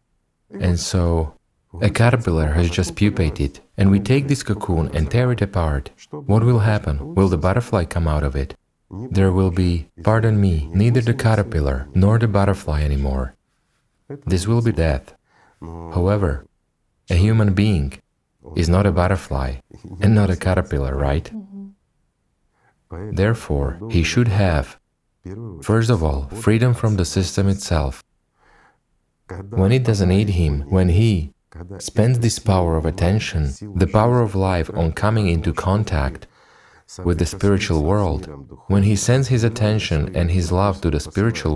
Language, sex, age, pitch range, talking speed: English, male, 40-59, 80-105 Hz, 145 wpm